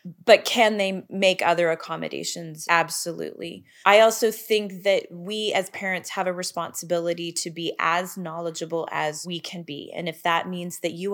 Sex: female